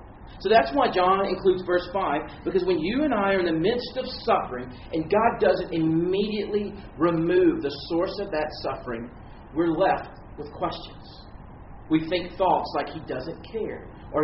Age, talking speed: 40-59, 170 wpm